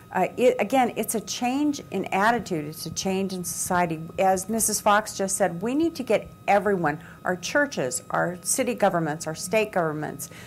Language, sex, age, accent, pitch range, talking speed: English, female, 50-69, American, 175-225 Hz, 170 wpm